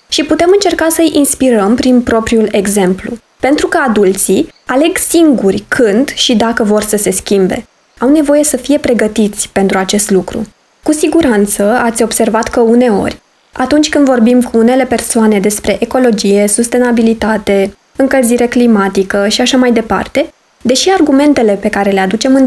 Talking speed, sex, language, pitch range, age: 150 wpm, female, Romanian, 220-280 Hz, 20-39